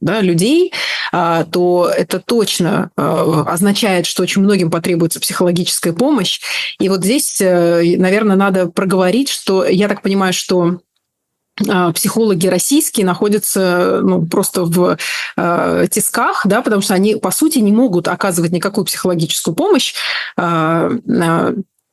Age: 30-49